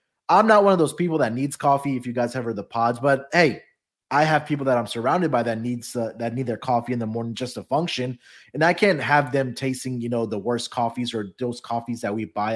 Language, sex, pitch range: English, male, 120-155 Hz